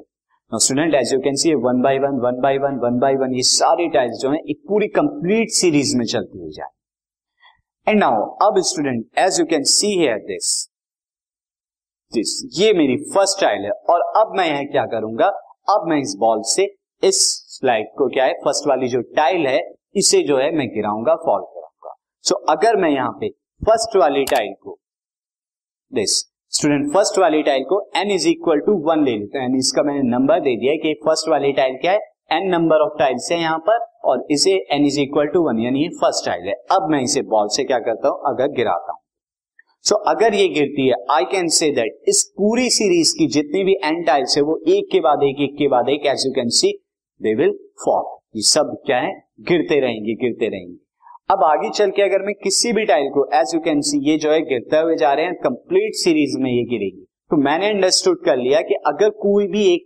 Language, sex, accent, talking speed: Hindi, male, native, 165 wpm